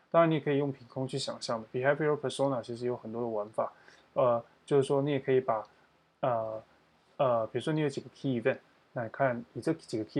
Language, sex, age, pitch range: Chinese, male, 20-39, 115-140 Hz